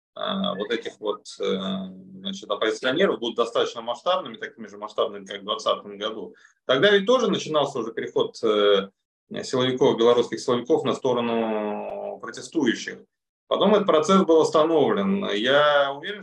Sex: male